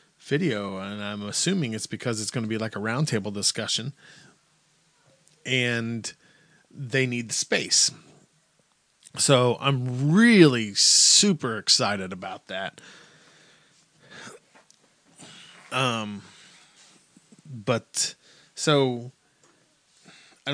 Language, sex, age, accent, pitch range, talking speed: English, male, 20-39, American, 110-140 Hz, 85 wpm